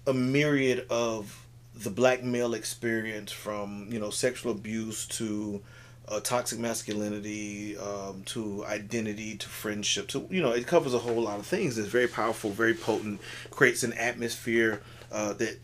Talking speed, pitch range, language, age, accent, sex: 155 wpm, 110-120 Hz, English, 30-49, American, male